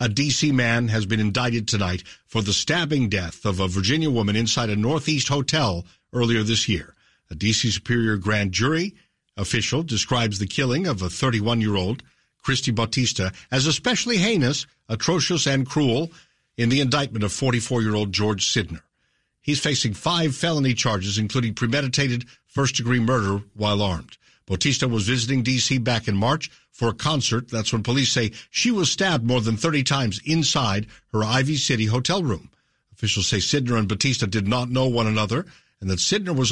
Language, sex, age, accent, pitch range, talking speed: English, male, 60-79, American, 110-145 Hz, 165 wpm